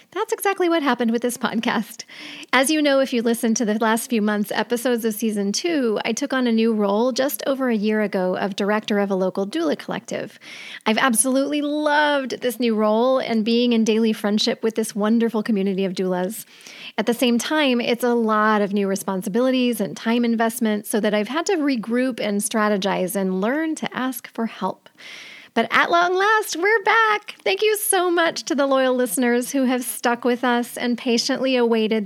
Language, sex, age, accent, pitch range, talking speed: English, female, 30-49, American, 215-265 Hz, 200 wpm